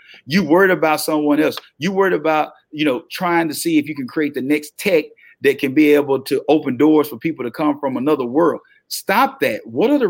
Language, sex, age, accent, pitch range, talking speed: English, male, 40-59, American, 145-205 Hz, 230 wpm